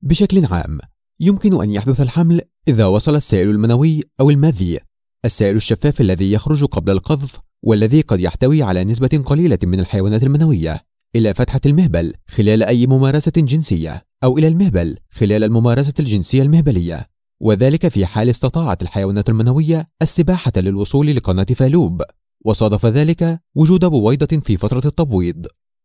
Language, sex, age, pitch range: Arabic, male, 30-49, 105-160 Hz